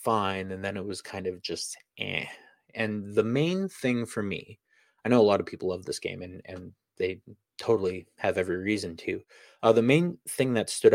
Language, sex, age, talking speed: English, male, 30-49, 210 wpm